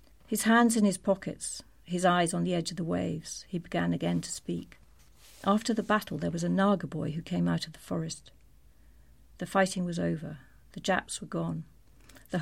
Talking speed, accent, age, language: 200 wpm, British, 50-69, English